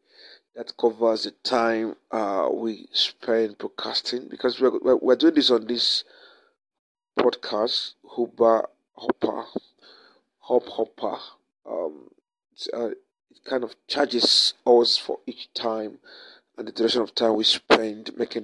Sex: male